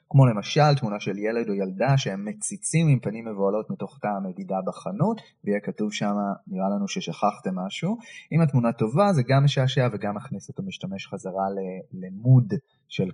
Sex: male